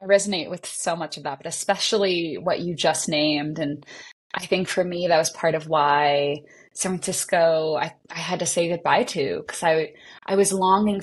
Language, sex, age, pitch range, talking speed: English, female, 20-39, 165-205 Hz, 200 wpm